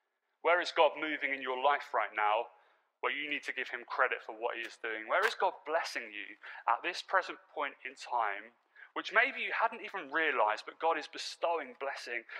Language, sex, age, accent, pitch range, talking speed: English, male, 30-49, British, 215-275 Hz, 210 wpm